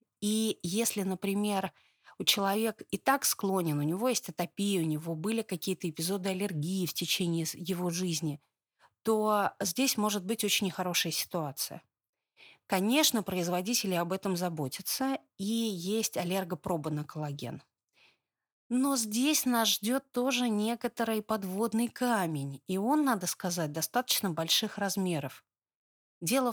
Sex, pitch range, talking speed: female, 175-225 Hz, 125 wpm